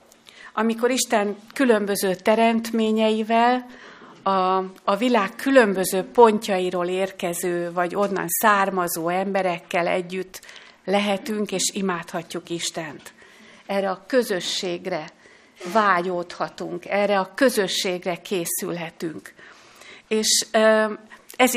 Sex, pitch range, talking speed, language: female, 185-220 Hz, 80 wpm, Hungarian